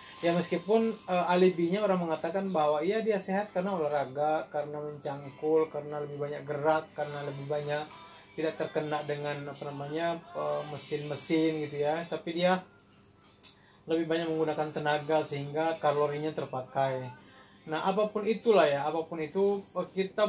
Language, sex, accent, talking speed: Indonesian, male, native, 140 wpm